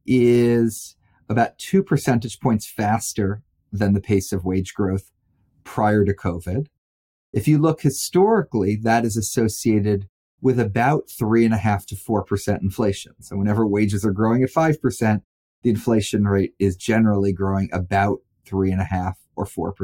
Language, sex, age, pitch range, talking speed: English, male, 30-49, 100-125 Hz, 125 wpm